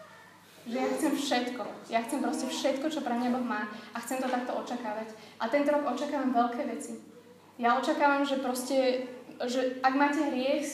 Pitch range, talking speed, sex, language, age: 240-280 Hz, 180 wpm, female, Slovak, 20-39